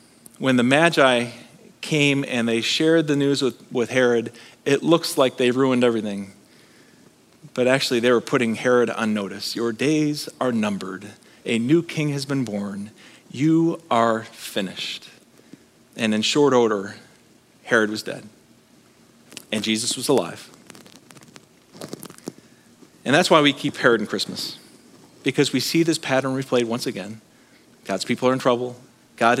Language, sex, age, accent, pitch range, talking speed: English, male, 40-59, American, 120-165 Hz, 145 wpm